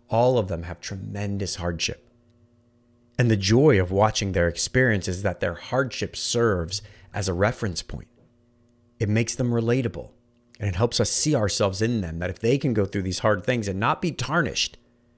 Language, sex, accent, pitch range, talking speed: English, male, American, 95-120 Hz, 185 wpm